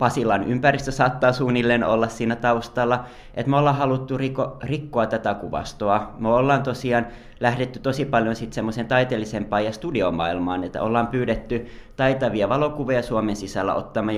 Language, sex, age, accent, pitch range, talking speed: Finnish, male, 20-39, native, 105-130 Hz, 145 wpm